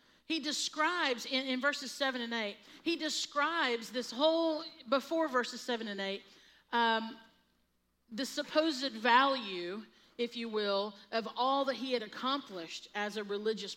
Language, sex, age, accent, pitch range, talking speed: English, female, 40-59, American, 200-270 Hz, 145 wpm